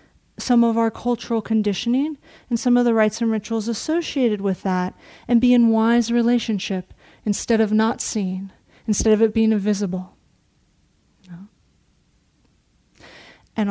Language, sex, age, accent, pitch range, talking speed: English, female, 30-49, American, 190-220 Hz, 130 wpm